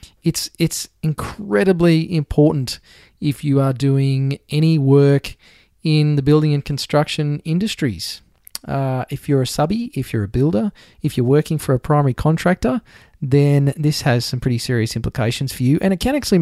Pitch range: 125-155 Hz